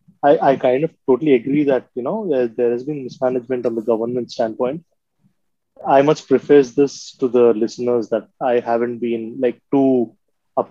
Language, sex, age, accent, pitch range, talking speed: English, male, 20-39, Indian, 120-140 Hz, 180 wpm